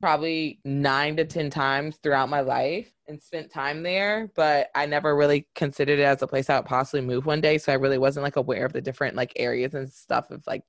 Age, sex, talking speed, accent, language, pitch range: 20-39, female, 235 wpm, American, English, 140-170 Hz